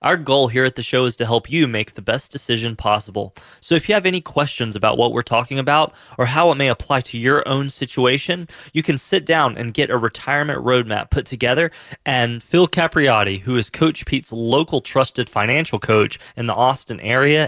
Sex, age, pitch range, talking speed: male, 20-39, 120-150 Hz, 210 wpm